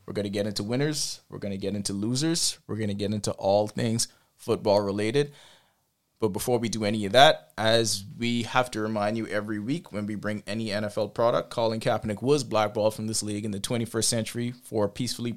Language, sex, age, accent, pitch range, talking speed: English, male, 20-39, American, 100-120 Hz, 215 wpm